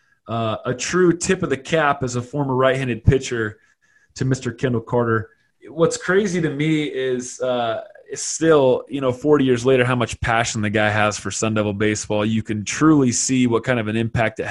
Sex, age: male, 20-39